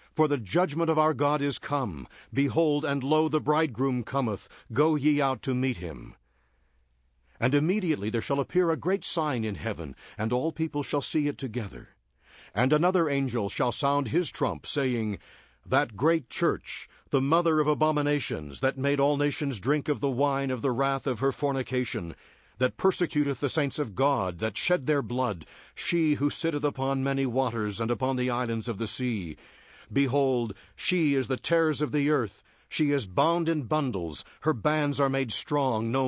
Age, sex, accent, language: 60-79, male, American, English